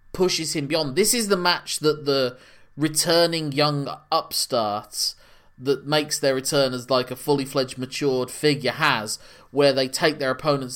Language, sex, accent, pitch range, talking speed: English, male, British, 115-140 Hz, 160 wpm